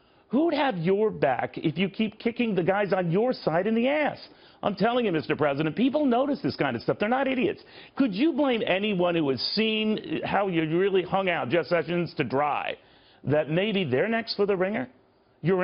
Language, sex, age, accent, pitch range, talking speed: English, male, 40-59, American, 150-220 Hz, 205 wpm